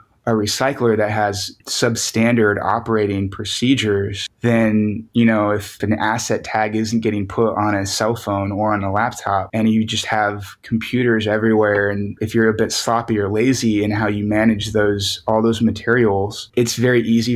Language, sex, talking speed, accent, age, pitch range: English, male, 175 wpm, American, 20-39, 105-115 Hz